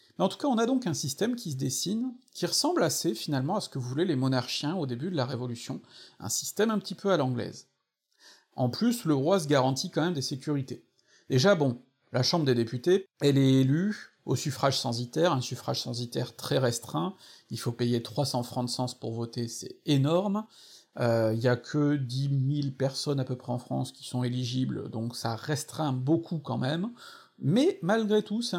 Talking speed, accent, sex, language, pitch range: 205 wpm, French, male, French, 130-185 Hz